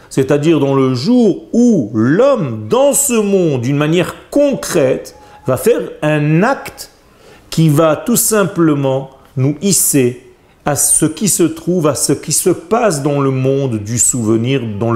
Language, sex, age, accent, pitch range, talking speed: French, male, 40-59, French, 140-195 Hz, 155 wpm